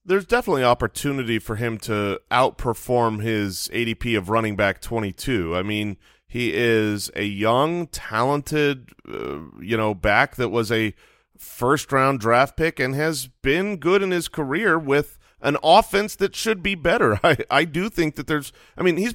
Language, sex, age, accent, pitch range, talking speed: English, male, 30-49, American, 110-145 Hz, 165 wpm